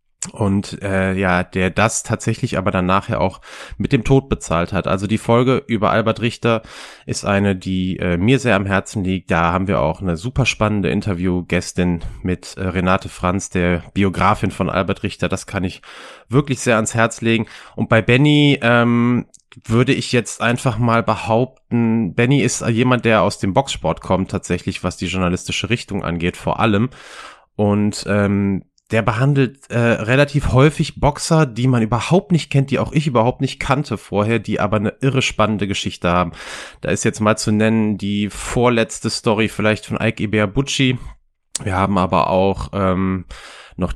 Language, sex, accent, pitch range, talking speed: German, male, German, 95-120 Hz, 175 wpm